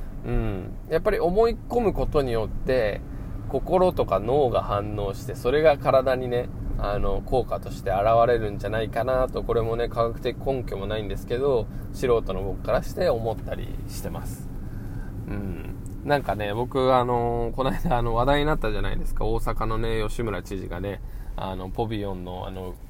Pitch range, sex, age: 100-125 Hz, male, 20-39